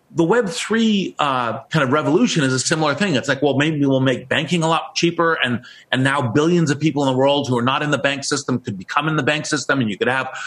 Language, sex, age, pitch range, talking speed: English, male, 40-59, 130-160 Hz, 260 wpm